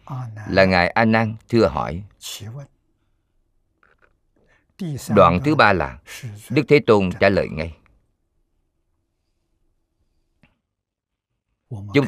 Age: 50-69